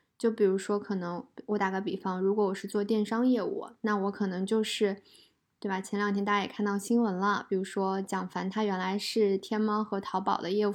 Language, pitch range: Chinese, 195-225 Hz